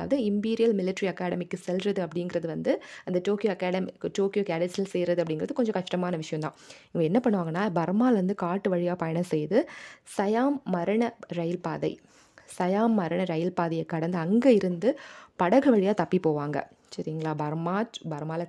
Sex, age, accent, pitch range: female, 20-39, native, 170-220 Hz